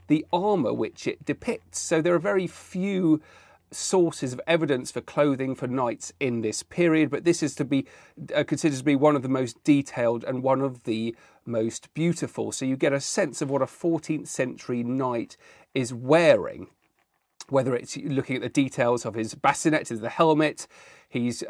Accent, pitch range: British, 125-160 Hz